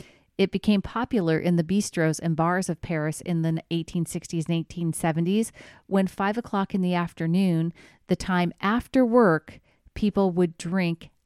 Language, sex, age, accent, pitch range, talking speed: English, female, 40-59, American, 165-200 Hz, 150 wpm